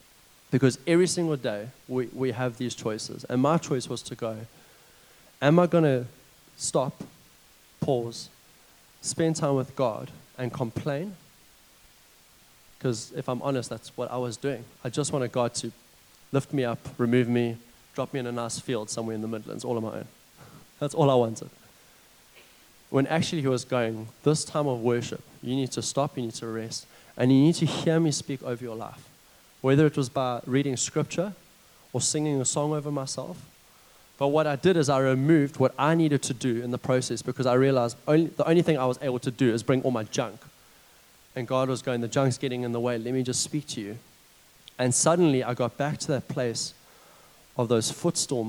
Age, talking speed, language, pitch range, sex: 20-39, 200 wpm, English, 120-145 Hz, male